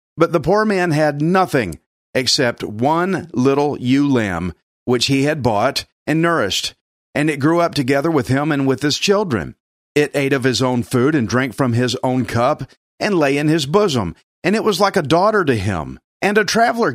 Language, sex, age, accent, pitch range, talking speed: English, male, 40-59, American, 130-165 Hz, 200 wpm